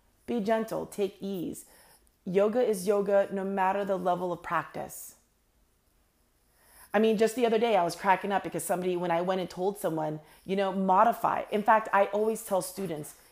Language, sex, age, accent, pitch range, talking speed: English, female, 30-49, American, 180-210 Hz, 180 wpm